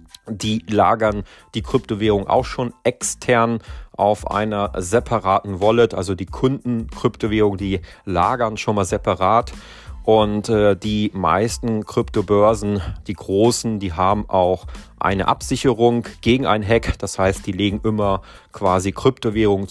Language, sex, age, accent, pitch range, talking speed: German, male, 30-49, German, 95-110 Hz, 120 wpm